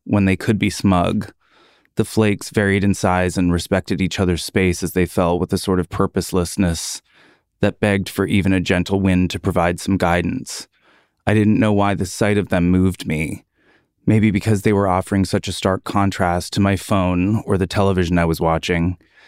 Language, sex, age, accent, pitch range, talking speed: English, male, 30-49, American, 90-100 Hz, 195 wpm